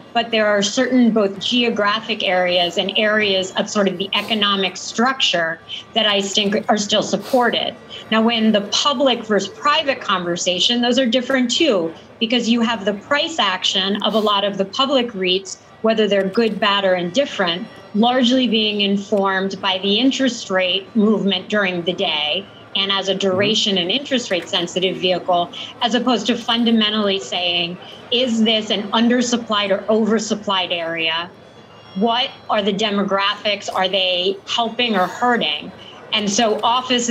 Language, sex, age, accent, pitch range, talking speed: English, female, 30-49, American, 195-230 Hz, 155 wpm